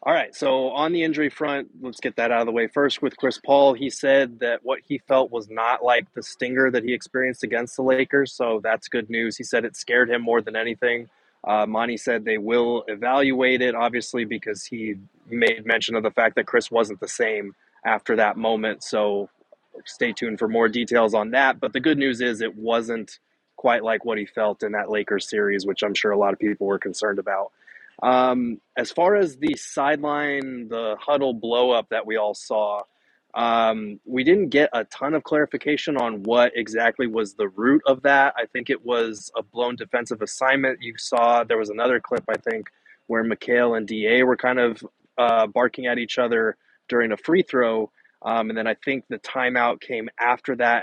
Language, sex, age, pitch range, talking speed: English, male, 20-39, 110-130 Hz, 210 wpm